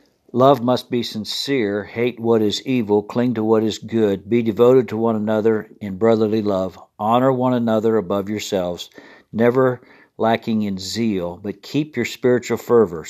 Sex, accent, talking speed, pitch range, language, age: male, American, 160 wpm, 105-120 Hz, English, 60-79